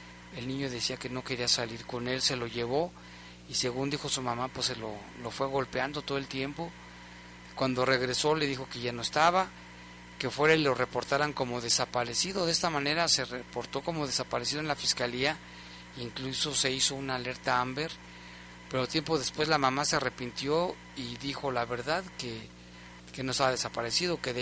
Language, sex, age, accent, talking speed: Spanish, male, 40-59, Mexican, 190 wpm